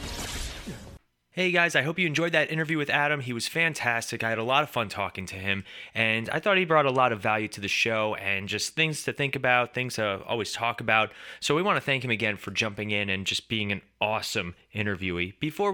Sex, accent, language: male, American, English